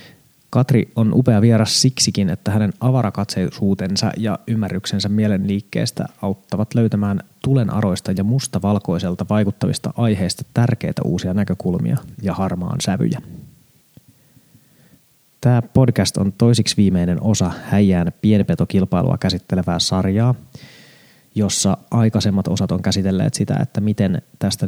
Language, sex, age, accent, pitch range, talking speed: Finnish, male, 20-39, native, 95-115 Hz, 105 wpm